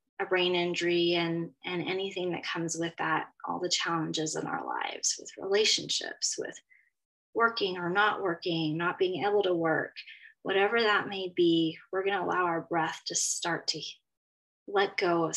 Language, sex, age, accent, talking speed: English, female, 20-39, American, 170 wpm